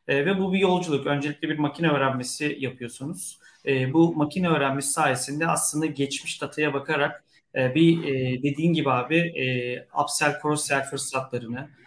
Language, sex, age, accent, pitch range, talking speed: Turkish, male, 40-59, native, 135-175 Hz, 145 wpm